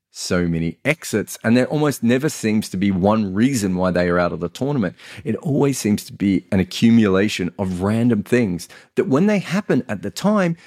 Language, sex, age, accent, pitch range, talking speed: English, male, 40-59, Australian, 95-135 Hz, 200 wpm